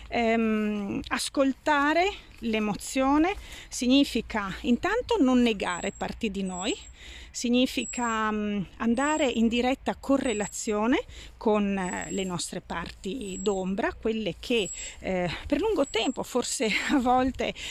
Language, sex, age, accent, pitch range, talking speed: Italian, female, 40-59, native, 215-275 Hz, 90 wpm